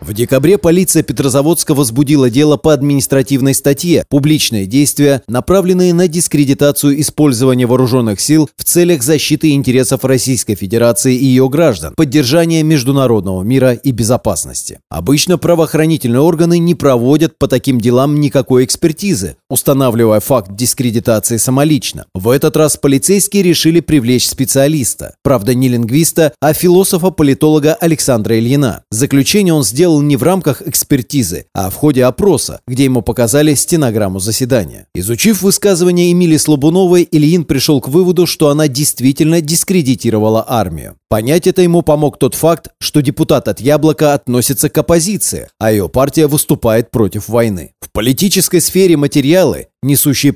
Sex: male